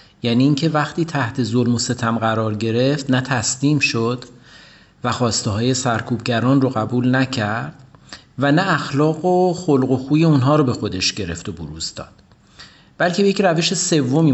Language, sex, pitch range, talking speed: Persian, male, 115-140 Hz, 165 wpm